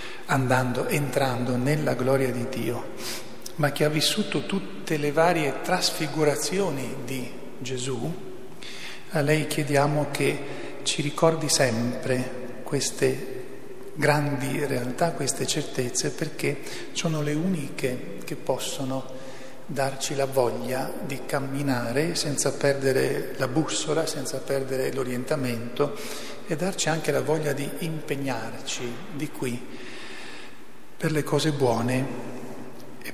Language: Italian